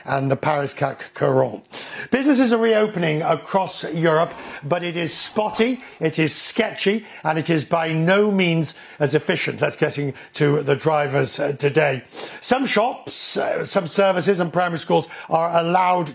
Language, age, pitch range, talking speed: English, 50-69, 150-195 Hz, 150 wpm